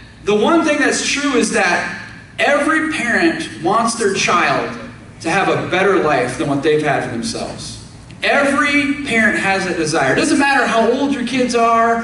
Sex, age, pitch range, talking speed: male, 30-49, 165-225 Hz, 180 wpm